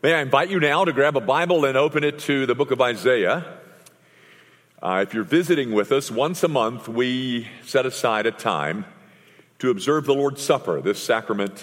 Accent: American